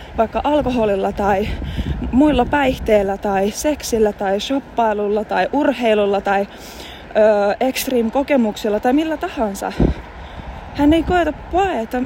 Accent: native